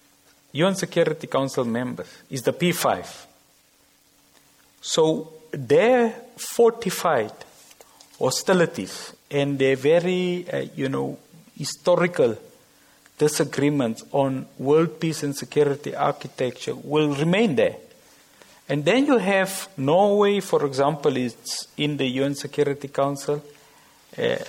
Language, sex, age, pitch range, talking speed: English, male, 50-69, 135-170 Hz, 105 wpm